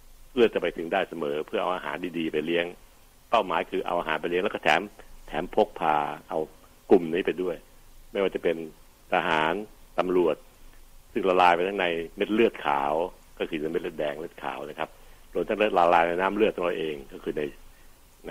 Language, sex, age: Thai, male, 60-79